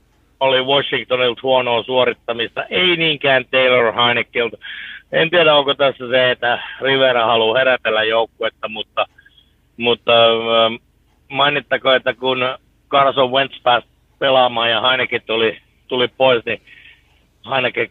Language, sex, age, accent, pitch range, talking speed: Finnish, male, 60-79, native, 115-140 Hz, 115 wpm